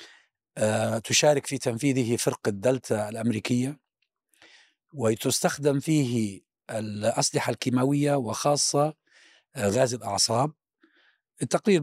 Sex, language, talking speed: male, Arabic, 70 wpm